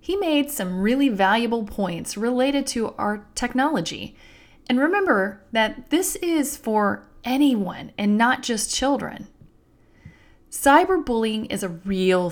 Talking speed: 120 wpm